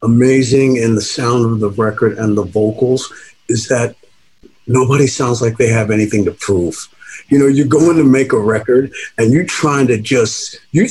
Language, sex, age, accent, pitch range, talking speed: English, male, 50-69, American, 115-150 Hz, 185 wpm